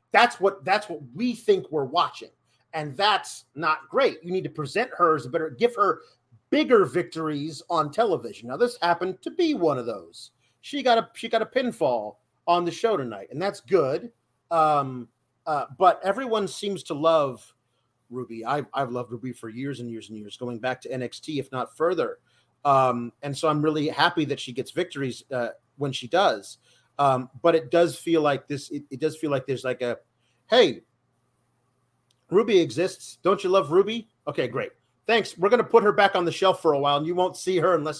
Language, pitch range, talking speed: English, 130-185 Hz, 205 wpm